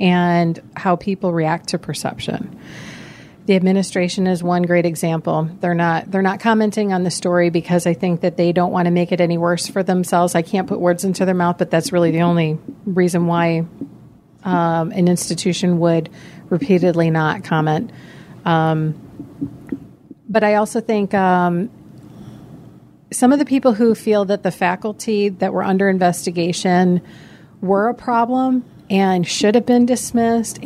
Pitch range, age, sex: 175-210 Hz, 40-59, female